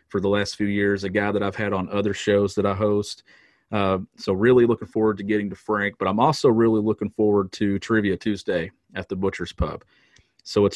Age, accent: 40-59, American